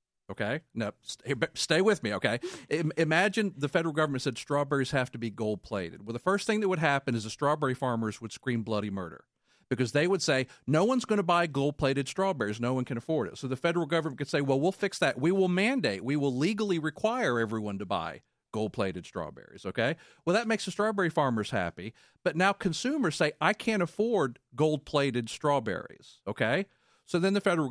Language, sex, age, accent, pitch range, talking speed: English, male, 40-59, American, 125-185 Hz, 205 wpm